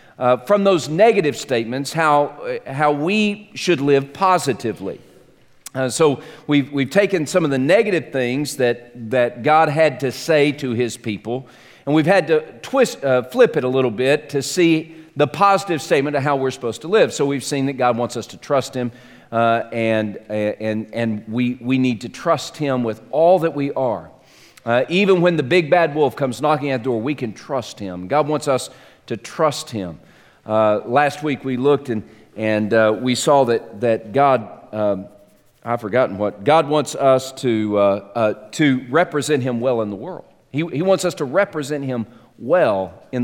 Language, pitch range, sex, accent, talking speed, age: English, 115-155 Hz, male, American, 190 wpm, 40-59